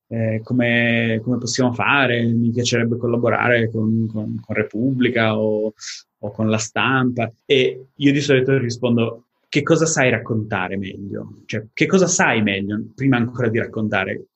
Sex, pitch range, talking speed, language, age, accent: male, 110-130 Hz, 150 wpm, Italian, 20-39, native